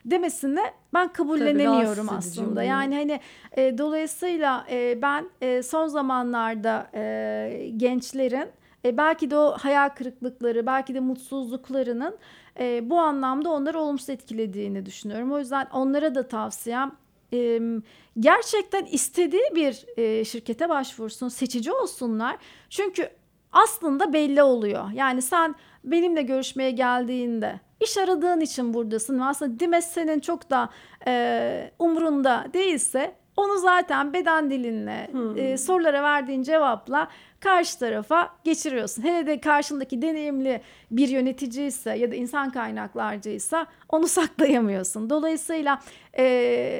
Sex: female